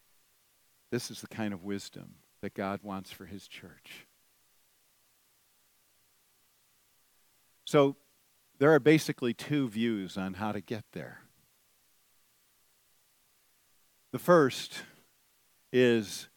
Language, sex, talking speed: English, male, 95 wpm